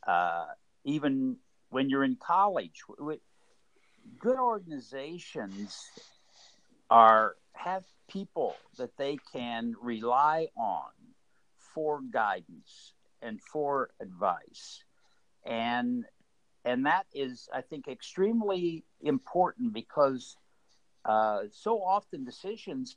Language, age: English, 60-79